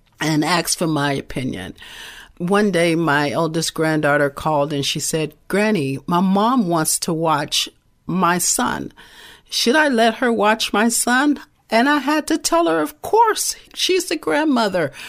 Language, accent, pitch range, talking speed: English, American, 150-210 Hz, 160 wpm